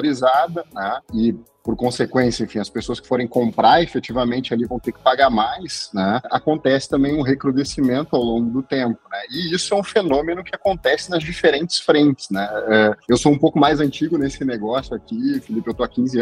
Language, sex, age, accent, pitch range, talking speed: Portuguese, male, 30-49, Brazilian, 120-155 Hz, 200 wpm